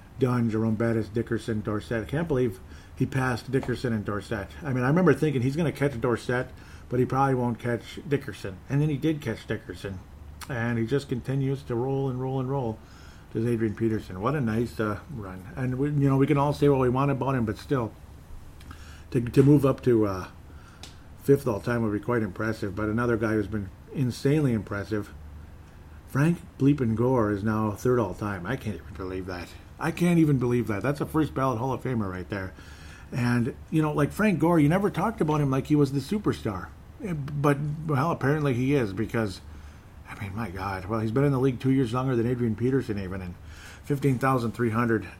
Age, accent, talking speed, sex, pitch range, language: 50-69, American, 200 wpm, male, 100-135 Hz, English